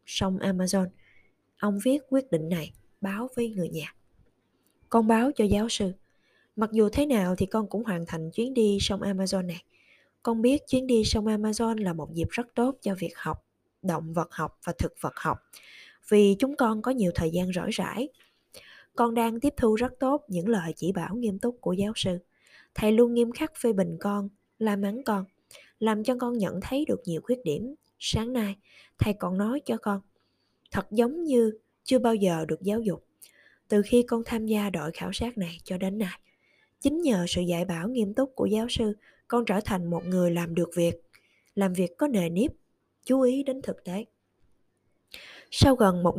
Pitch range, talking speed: 185-235 Hz, 200 wpm